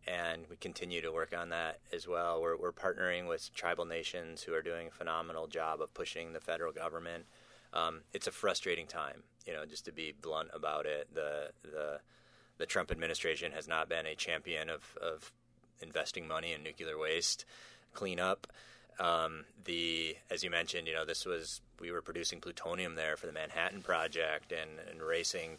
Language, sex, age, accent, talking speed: English, male, 30-49, American, 185 wpm